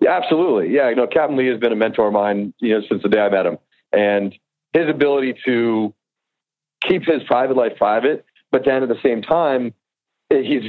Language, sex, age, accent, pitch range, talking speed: English, male, 40-59, American, 105-145 Hz, 210 wpm